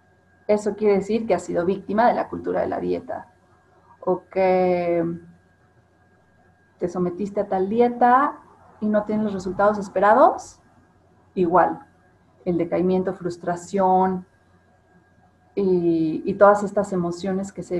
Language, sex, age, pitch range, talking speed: Spanish, female, 30-49, 175-215 Hz, 125 wpm